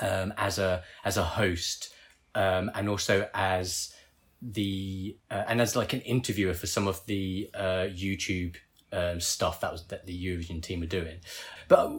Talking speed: 170 wpm